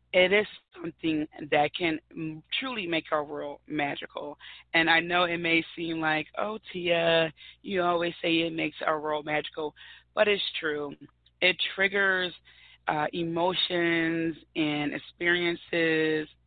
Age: 20-39